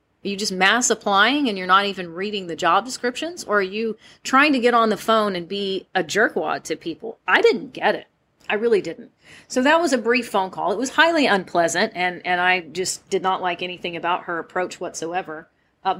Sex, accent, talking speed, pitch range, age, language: female, American, 220 wpm, 190-255 Hz, 30-49, English